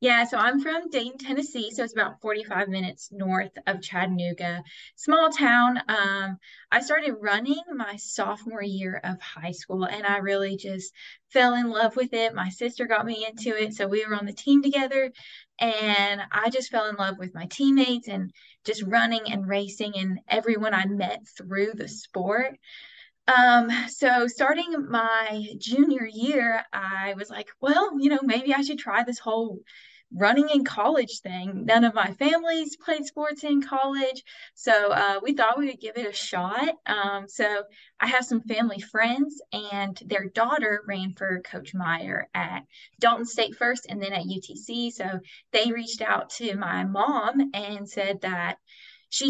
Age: 20-39